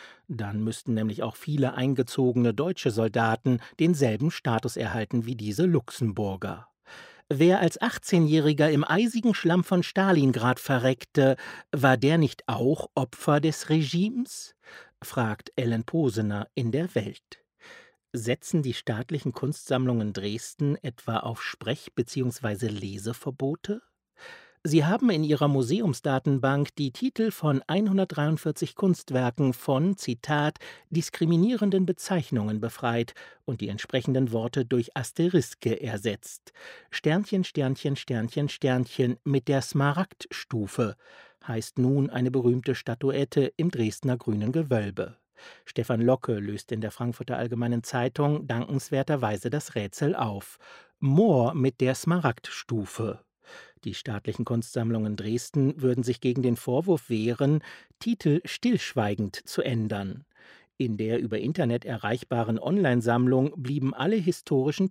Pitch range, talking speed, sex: 120-155 Hz, 115 wpm, male